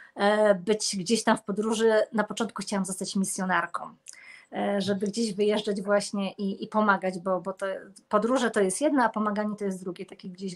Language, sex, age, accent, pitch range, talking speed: Polish, female, 20-39, native, 200-240 Hz, 170 wpm